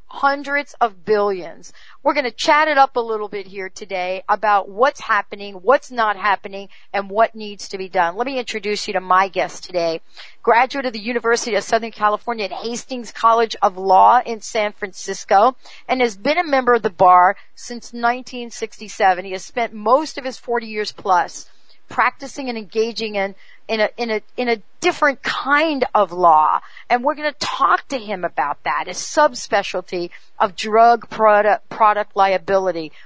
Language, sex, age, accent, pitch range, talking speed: English, female, 40-59, American, 195-240 Hz, 180 wpm